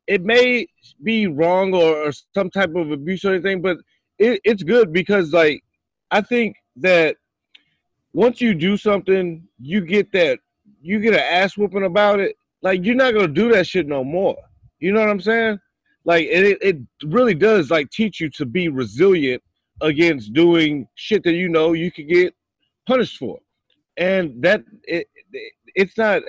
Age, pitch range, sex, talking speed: 30-49, 155-200 Hz, male, 170 wpm